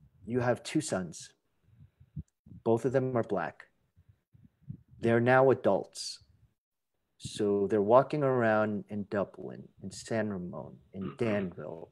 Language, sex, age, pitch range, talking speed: English, male, 40-59, 100-135 Hz, 115 wpm